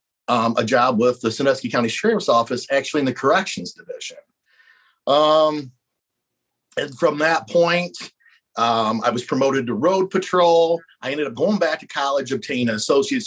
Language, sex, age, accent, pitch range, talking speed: English, male, 50-69, American, 120-155 Hz, 165 wpm